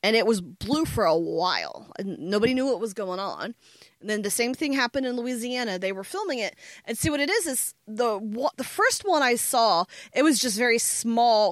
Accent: American